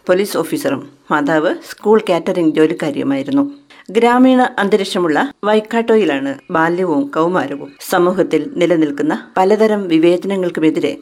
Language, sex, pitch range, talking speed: Malayalam, female, 165-225 Hz, 80 wpm